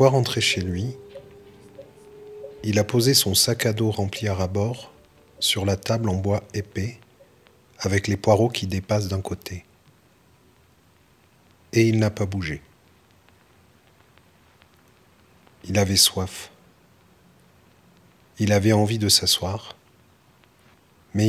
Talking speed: 115 wpm